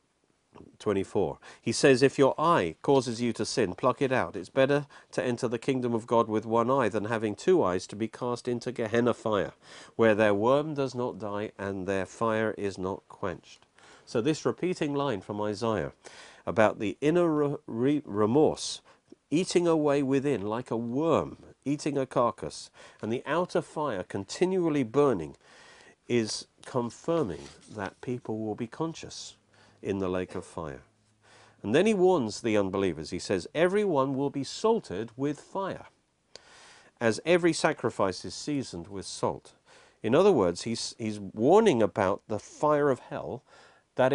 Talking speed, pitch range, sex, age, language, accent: 160 wpm, 105-150 Hz, male, 50-69, English, British